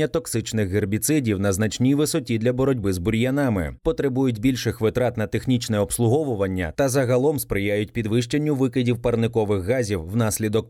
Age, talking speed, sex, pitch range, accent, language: 30-49, 130 wpm, male, 110-135 Hz, native, Ukrainian